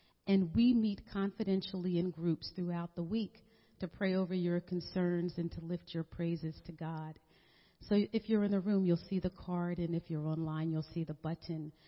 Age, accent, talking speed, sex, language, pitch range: 40-59, American, 195 wpm, female, English, 170-200 Hz